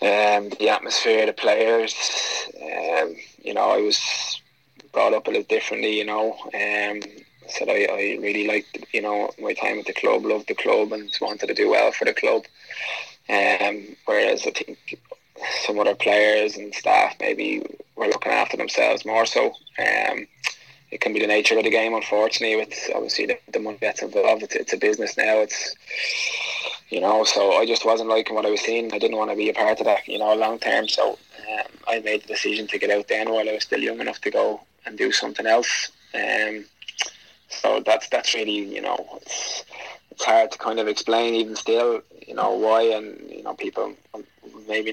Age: 20-39